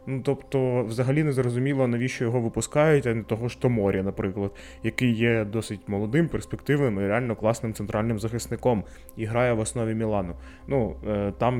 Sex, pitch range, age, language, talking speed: male, 110-135 Hz, 20-39, Ukrainian, 155 wpm